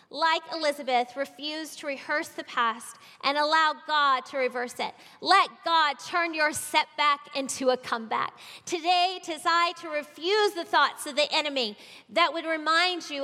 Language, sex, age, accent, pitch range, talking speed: English, female, 30-49, American, 255-335 Hz, 160 wpm